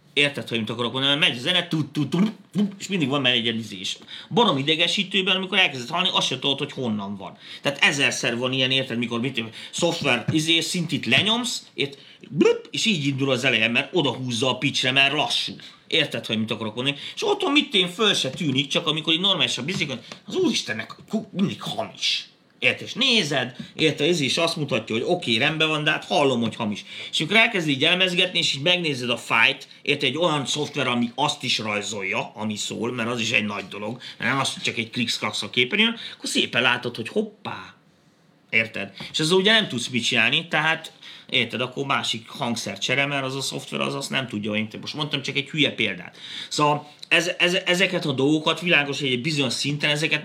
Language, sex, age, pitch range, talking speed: Hungarian, male, 30-49, 125-170 Hz, 195 wpm